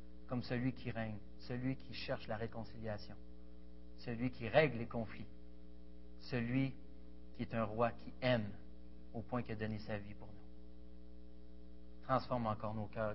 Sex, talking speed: male, 155 wpm